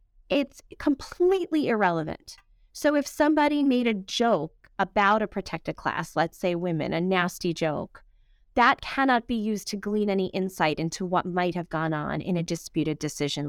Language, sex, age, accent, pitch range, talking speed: English, female, 30-49, American, 175-265 Hz, 165 wpm